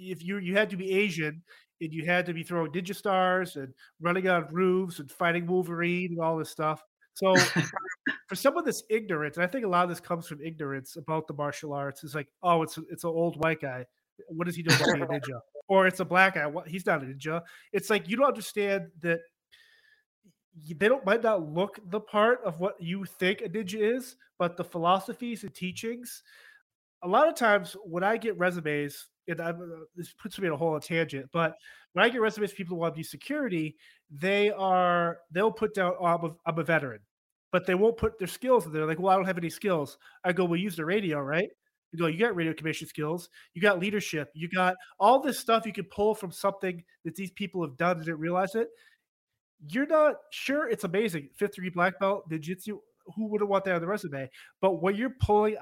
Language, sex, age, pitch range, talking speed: English, male, 30-49, 165-205 Hz, 225 wpm